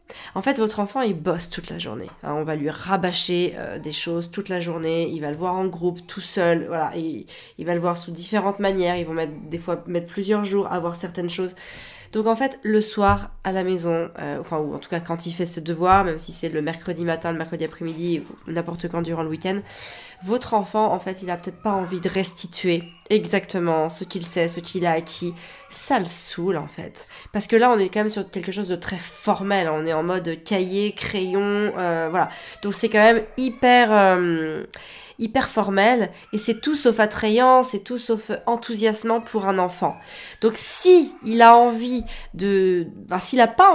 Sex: female